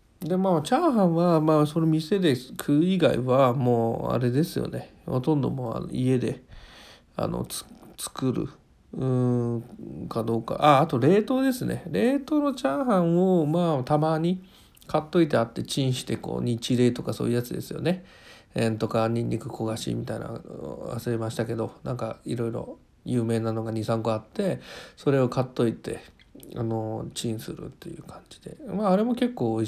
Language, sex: Japanese, male